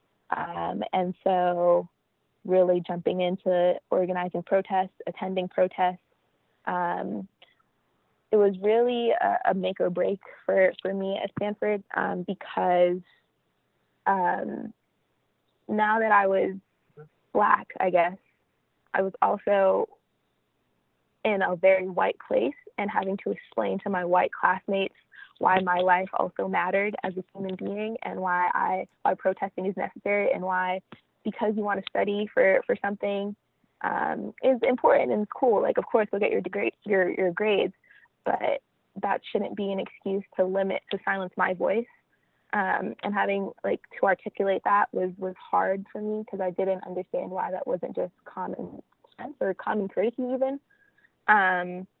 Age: 20-39